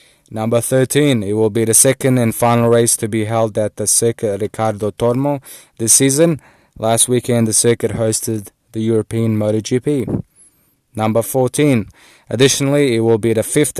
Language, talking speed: English, 155 wpm